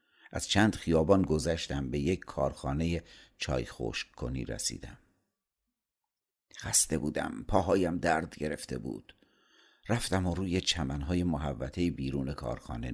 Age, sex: 60-79, male